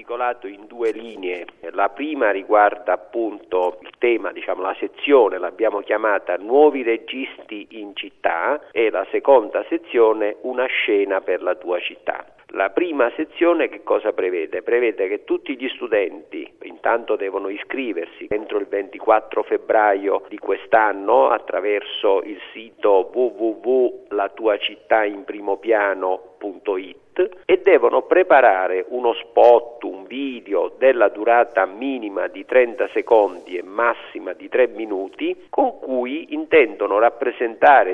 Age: 50-69